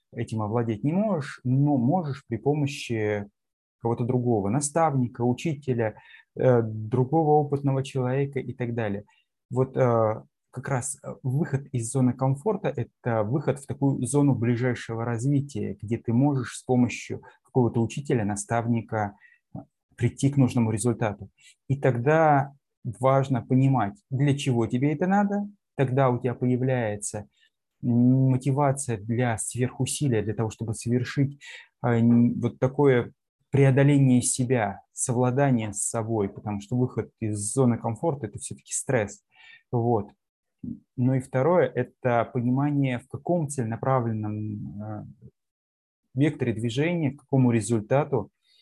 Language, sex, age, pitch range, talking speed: Russian, male, 20-39, 115-135 Hz, 115 wpm